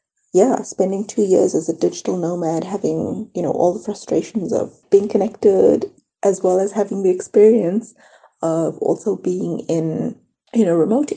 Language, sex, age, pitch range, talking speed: English, female, 30-49, 180-230 Hz, 160 wpm